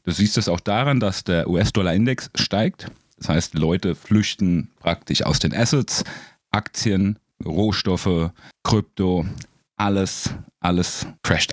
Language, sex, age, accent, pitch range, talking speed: German, male, 30-49, German, 100-135 Hz, 120 wpm